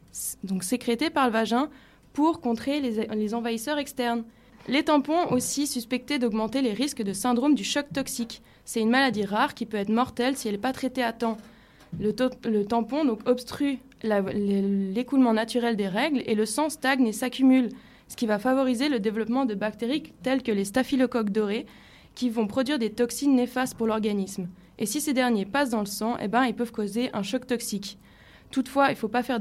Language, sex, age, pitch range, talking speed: French, female, 20-39, 220-265 Hz, 190 wpm